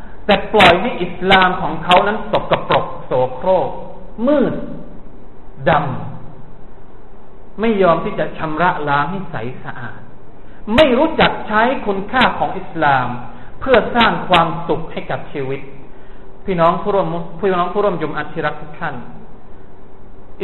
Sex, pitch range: male, 140-200 Hz